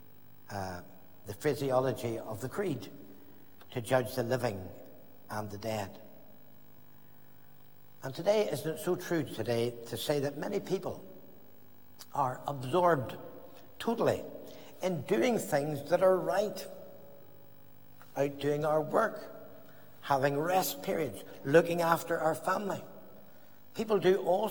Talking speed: 120 wpm